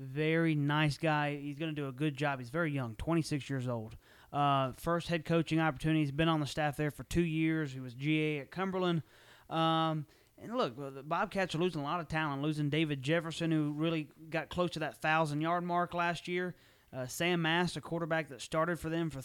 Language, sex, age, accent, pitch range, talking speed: English, male, 30-49, American, 140-165 Hz, 215 wpm